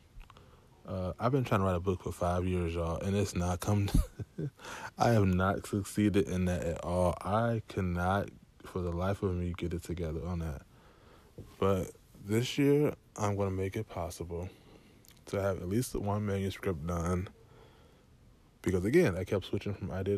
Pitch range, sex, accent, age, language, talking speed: 90-105 Hz, male, American, 20-39, English, 175 wpm